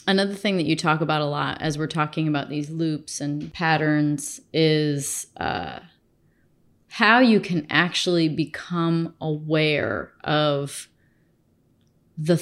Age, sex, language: 30-49, female, English